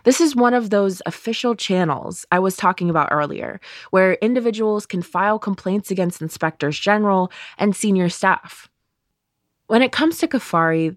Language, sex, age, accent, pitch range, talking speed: English, female, 20-39, American, 180-235 Hz, 155 wpm